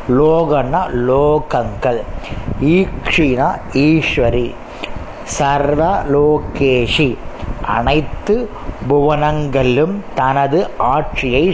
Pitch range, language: 130-165 Hz, Tamil